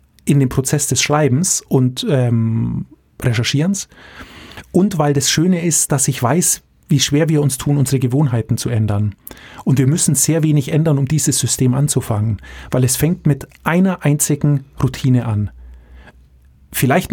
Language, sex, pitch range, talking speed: German, male, 125-160 Hz, 155 wpm